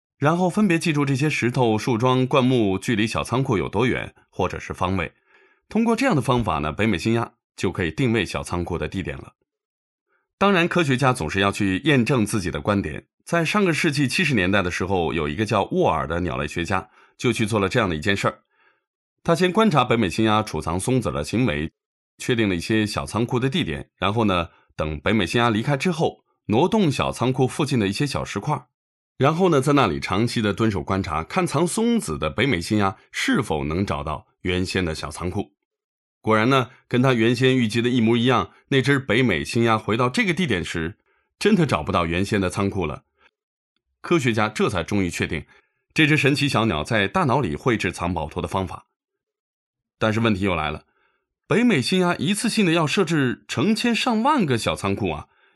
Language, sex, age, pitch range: English, male, 20-39, 95-145 Hz